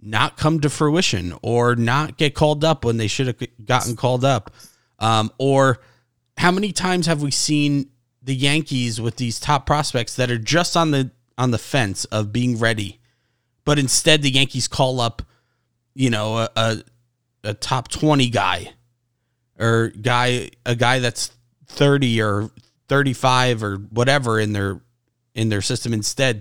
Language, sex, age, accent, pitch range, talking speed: English, male, 30-49, American, 115-135 Hz, 165 wpm